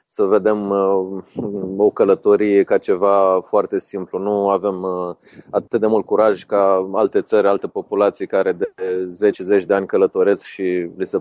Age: 30-49